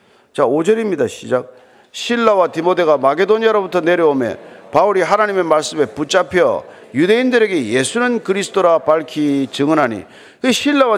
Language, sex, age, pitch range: Korean, male, 40-59, 160-255 Hz